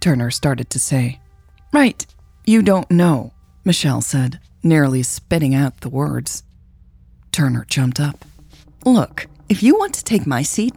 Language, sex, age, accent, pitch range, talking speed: English, female, 30-49, American, 125-185 Hz, 145 wpm